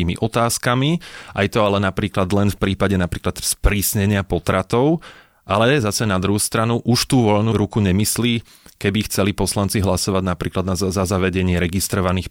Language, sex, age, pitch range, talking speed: Slovak, male, 30-49, 95-105 Hz, 150 wpm